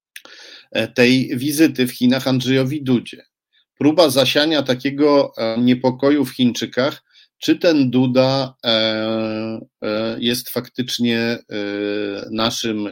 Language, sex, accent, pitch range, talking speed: Polish, male, native, 115-130 Hz, 85 wpm